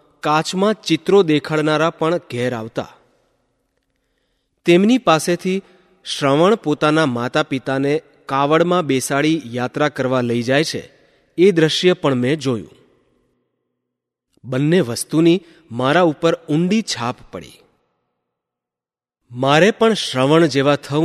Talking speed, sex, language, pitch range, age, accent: 75 wpm, male, Gujarati, 130-170 Hz, 30-49, native